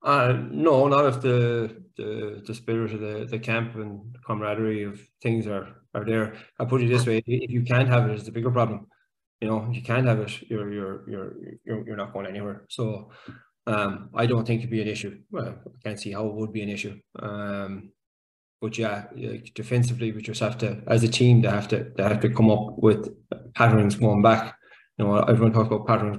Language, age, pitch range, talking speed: English, 20-39, 110-120 Hz, 225 wpm